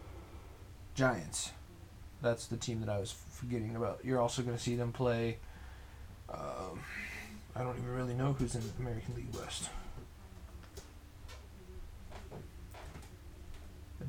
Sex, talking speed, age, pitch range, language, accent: male, 125 wpm, 20-39, 95-120 Hz, English, American